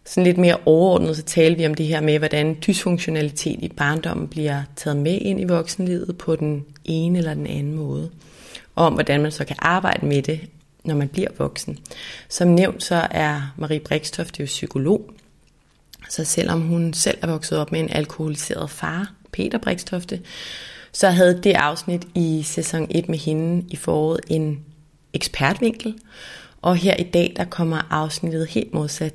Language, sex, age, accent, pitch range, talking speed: Danish, female, 30-49, native, 150-175 Hz, 175 wpm